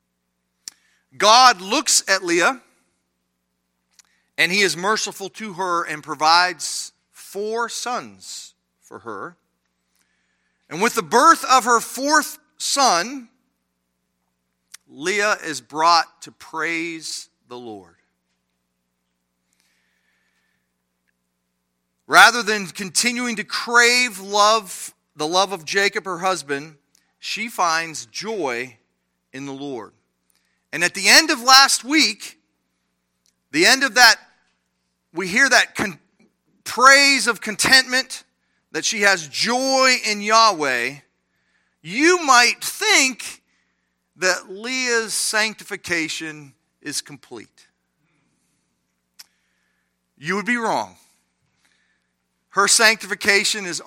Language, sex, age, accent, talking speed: English, male, 40-59, American, 95 wpm